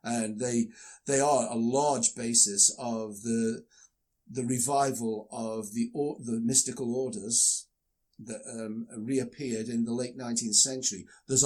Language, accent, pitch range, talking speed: English, British, 115-145 Hz, 135 wpm